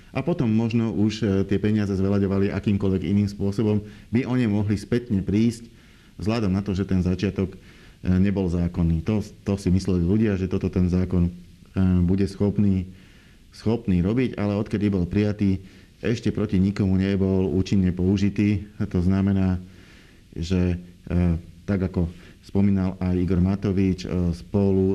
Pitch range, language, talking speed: 90-105 Hz, Slovak, 135 wpm